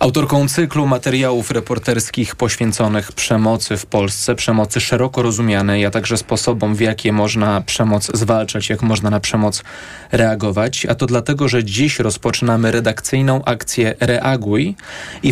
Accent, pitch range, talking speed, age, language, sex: native, 110-130 Hz, 135 wpm, 20-39, Polish, male